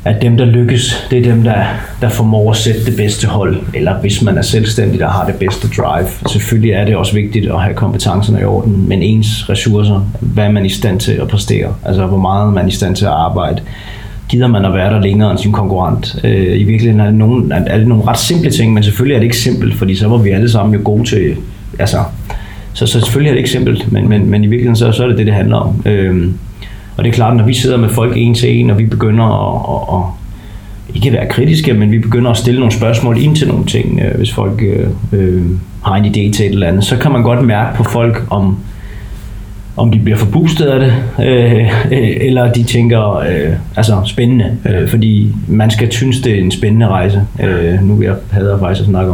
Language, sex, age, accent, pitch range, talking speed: Danish, male, 30-49, native, 100-120 Hz, 240 wpm